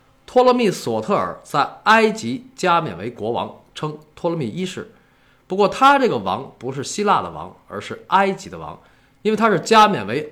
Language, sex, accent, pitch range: Chinese, male, native, 135-220 Hz